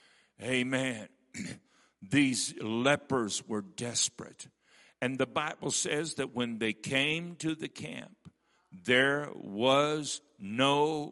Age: 60-79